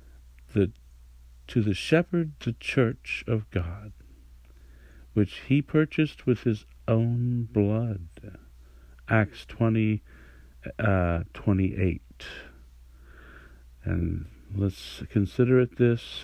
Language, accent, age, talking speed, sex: English, American, 60-79, 85 wpm, male